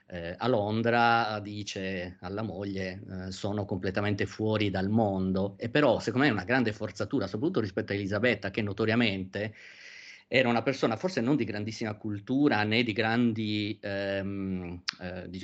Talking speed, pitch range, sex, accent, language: 155 wpm, 100-115 Hz, male, native, Italian